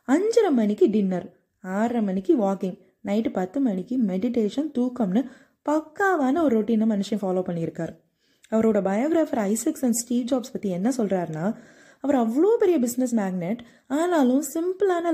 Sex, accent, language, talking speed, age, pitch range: female, native, Tamil, 135 wpm, 20-39, 215-275 Hz